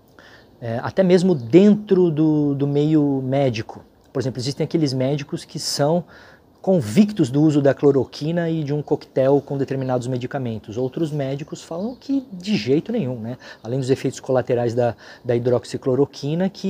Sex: male